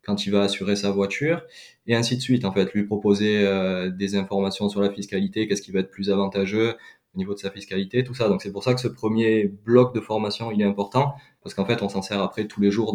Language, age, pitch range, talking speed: French, 20-39, 100-110 Hz, 260 wpm